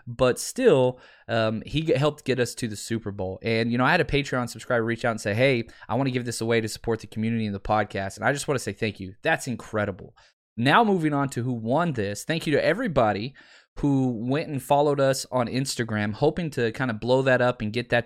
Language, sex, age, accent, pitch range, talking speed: English, male, 20-39, American, 115-150 Hz, 250 wpm